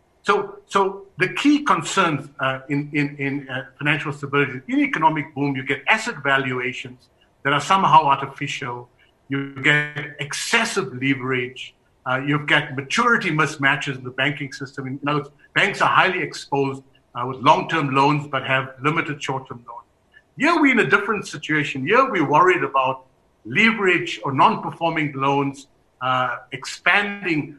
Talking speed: 150 wpm